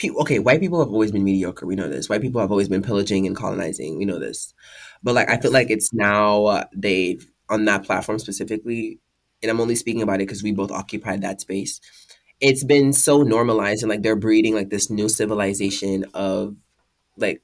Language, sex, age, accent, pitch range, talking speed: English, male, 20-39, American, 100-125 Hz, 210 wpm